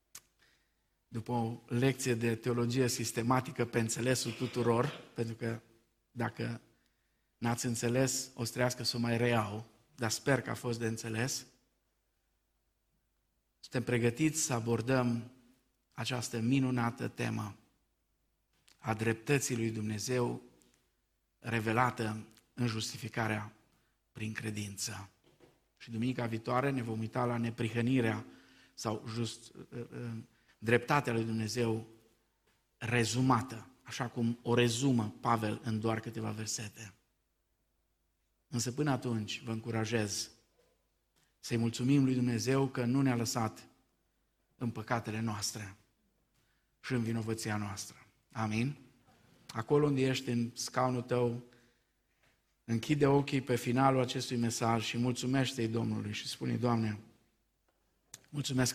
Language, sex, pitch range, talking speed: Romanian, male, 110-125 Hz, 110 wpm